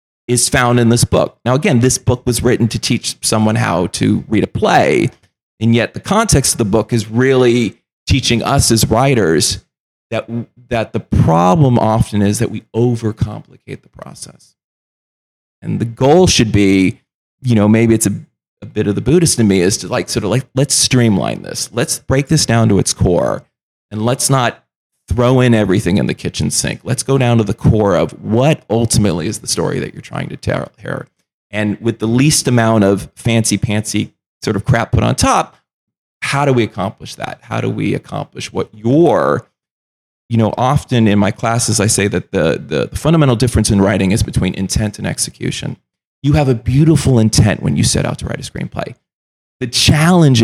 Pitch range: 105-130 Hz